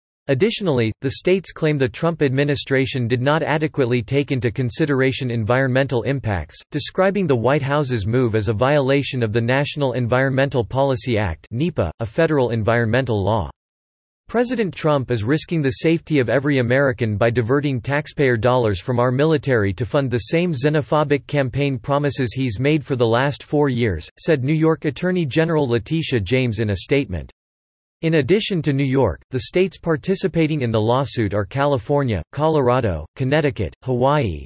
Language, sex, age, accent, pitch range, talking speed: English, male, 40-59, American, 115-150 Hz, 155 wpm